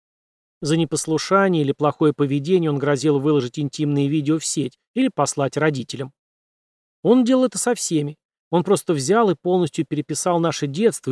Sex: male